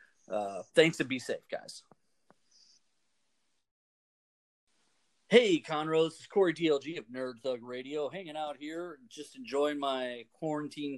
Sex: male